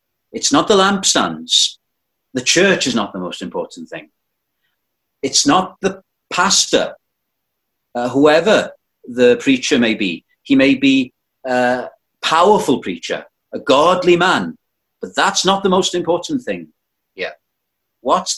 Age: 40-59